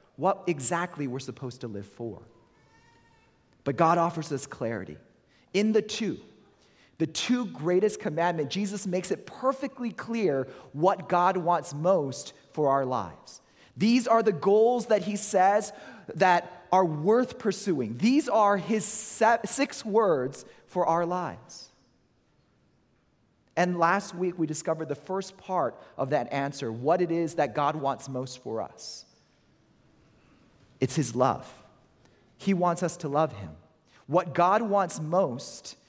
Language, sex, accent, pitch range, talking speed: English, male, American, 140-205 Hz, 140 wpm